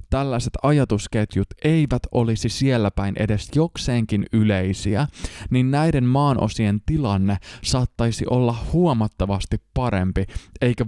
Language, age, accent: Finnish, 20-39, native